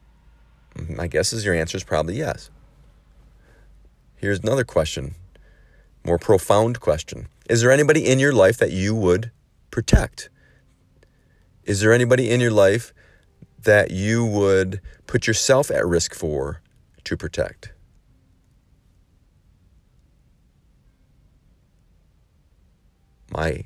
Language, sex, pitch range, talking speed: English, male, 85-115 Hz, 105 wpm